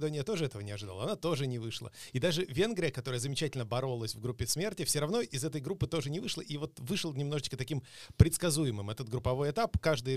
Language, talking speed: Russian, 210 wpm